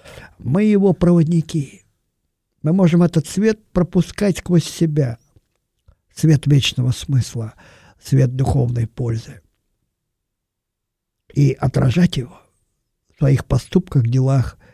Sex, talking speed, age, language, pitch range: male, 95 wpm, 50-69, Russian, 115-165 Hz